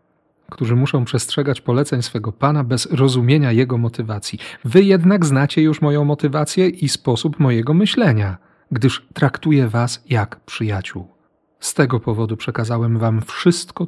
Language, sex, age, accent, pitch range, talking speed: Polish, male, 40-59, native, 115-145 Hz, 135 wpm